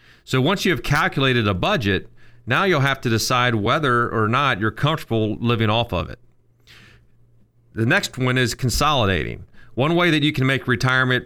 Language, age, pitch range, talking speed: English, 40-59, 110-135 Hz, 175 wpm